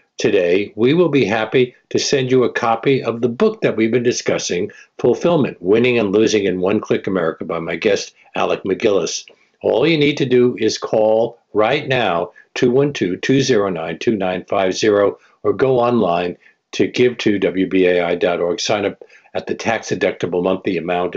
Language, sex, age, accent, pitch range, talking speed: English, male, 60-79, American, 120-185 Hz, 155 wpm